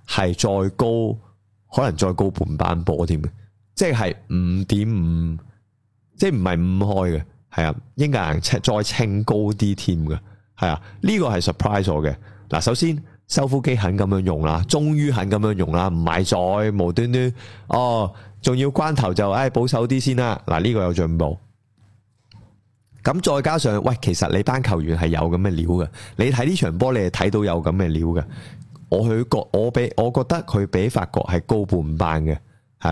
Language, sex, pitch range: Chinese, male, 90-120 Hz